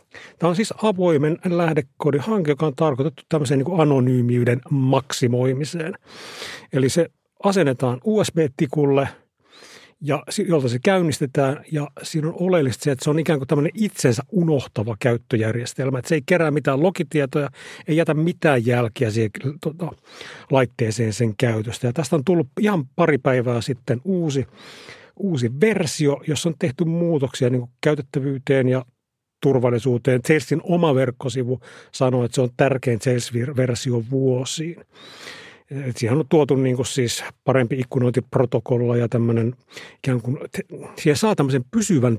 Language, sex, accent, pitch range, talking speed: Finnish, male, native, 125-160 Hz, 130 wpm